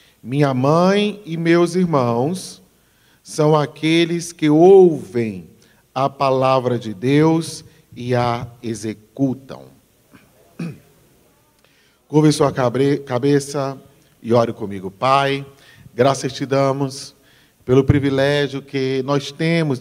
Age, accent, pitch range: 40-59, Brazilian, 125-150 Hz